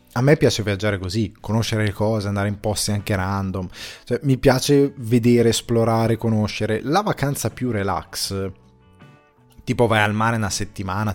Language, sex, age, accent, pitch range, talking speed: Italian, male, 20-39, native, 100-120 Hz, 150 wpm